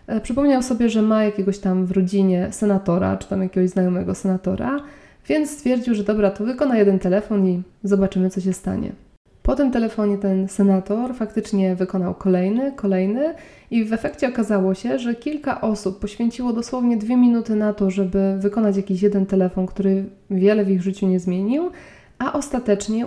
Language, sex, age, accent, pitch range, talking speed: Polish, female, 20-39, native, 195-230 Hz, 165 wpm